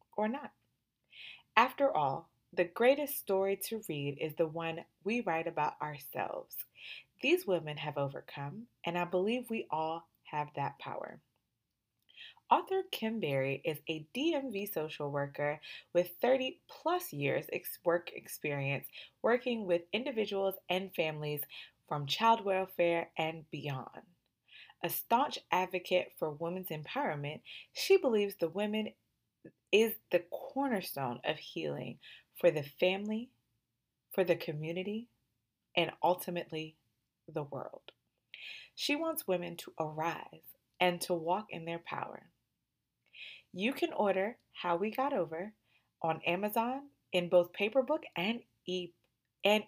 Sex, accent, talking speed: female, American, 125 wpm